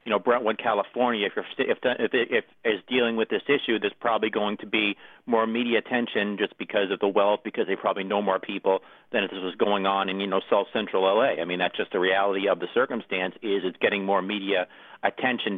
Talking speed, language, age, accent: 225 wpm, English, 50-69, American